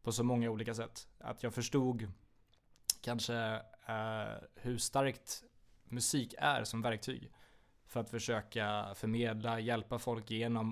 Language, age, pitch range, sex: Swedish, 20-39, 115-125 Hz, male